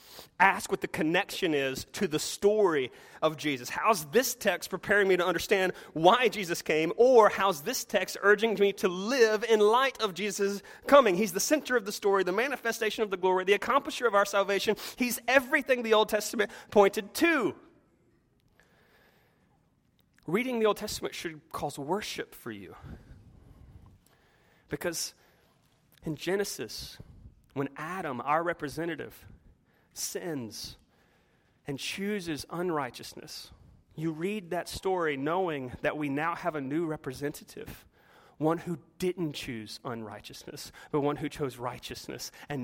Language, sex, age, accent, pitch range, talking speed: English, male, 30-49, American, 150-210 Hz, 140 wpm